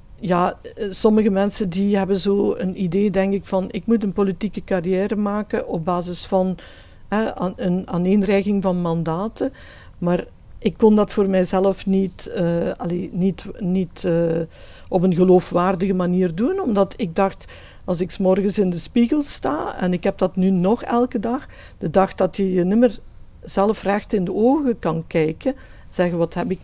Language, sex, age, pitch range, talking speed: Dutch, female, 50-69, 175-205 Hz, 180 wpm